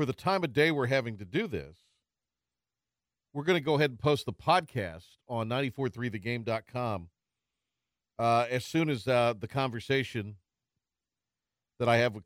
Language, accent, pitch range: English, American, 115-150 Hz